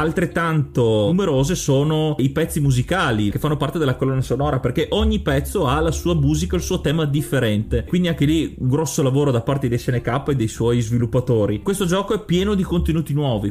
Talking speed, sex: 195 wpm, male